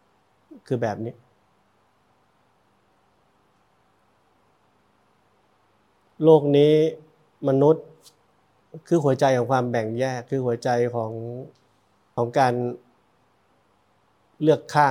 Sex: male